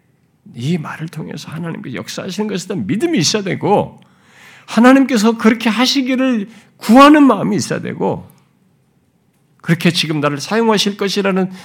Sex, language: male, Korean